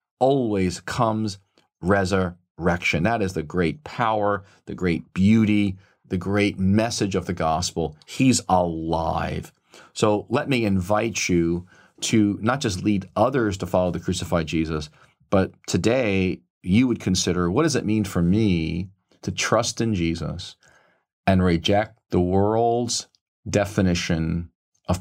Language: English